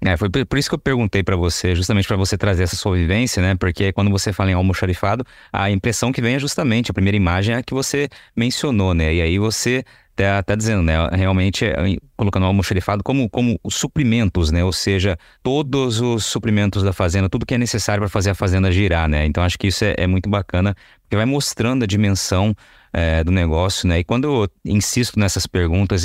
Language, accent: Portuguese, Brazilian